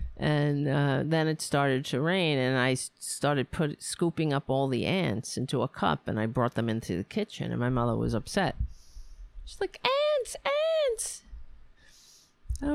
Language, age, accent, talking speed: English, 50-69, American, 175 wpm